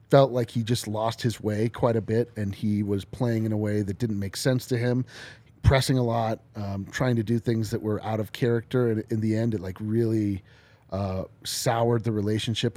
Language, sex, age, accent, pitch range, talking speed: English, male, 30-49, American, 110-135 Hz, 225 wpm